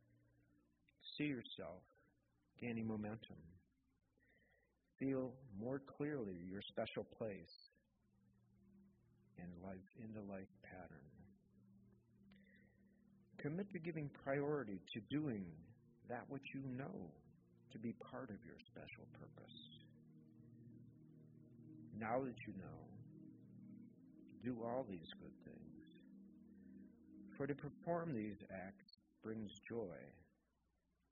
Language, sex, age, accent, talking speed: English, male, 50-69, American, 95 wpm